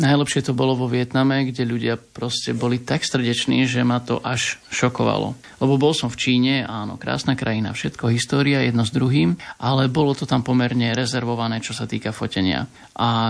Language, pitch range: Slovak, 115-135 Hz